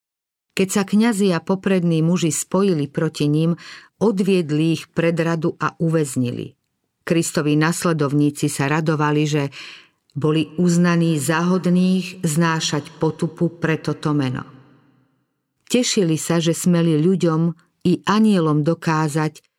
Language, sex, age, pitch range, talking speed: Slovak, female, 50-69, 150-180 Hz, 110 wpm